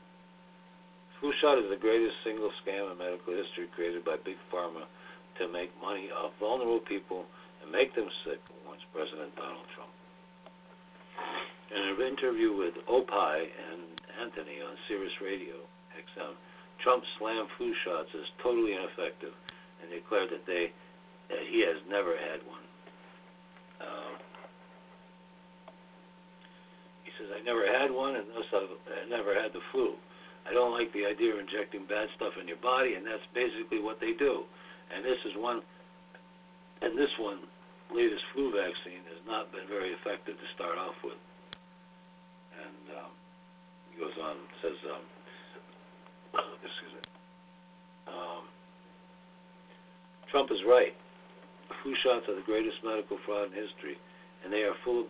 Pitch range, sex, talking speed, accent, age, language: 120-180 Hz, male, 145 wpm, American, 60-79, English